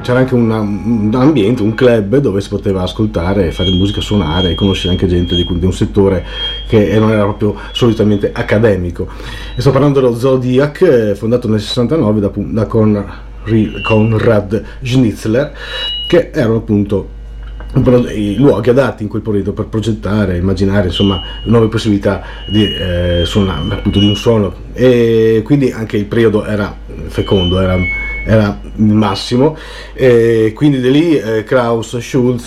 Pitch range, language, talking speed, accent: 95-115 Hz, Italian, 140 wpm, native